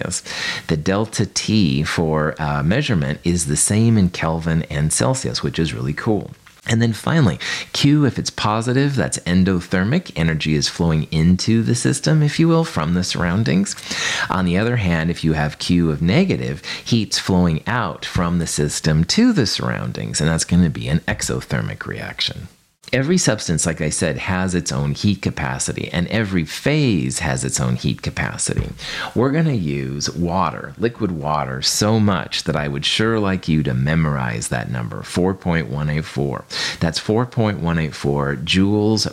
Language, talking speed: English, 160 wpm